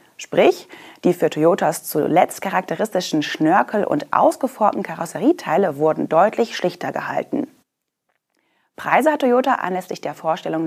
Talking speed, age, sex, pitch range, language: 110 wpm, 30-49, female, 160-270 Hz, German